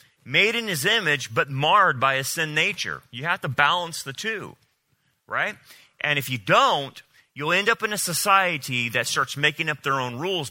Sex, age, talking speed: male, 30-49, 195 wpm